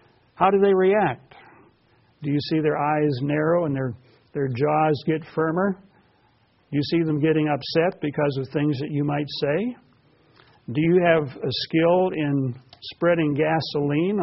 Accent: American